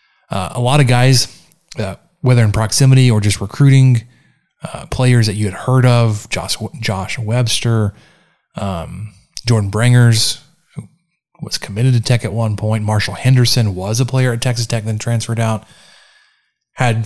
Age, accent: 20-39, American